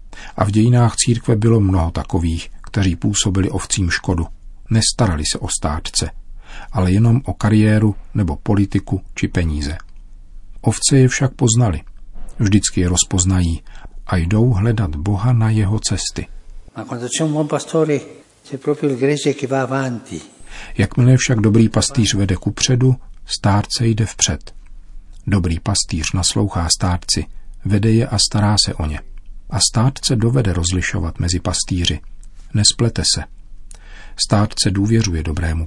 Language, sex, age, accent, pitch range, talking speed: Czech, male, 50-69, native, 90-115 Hz, 120 wpm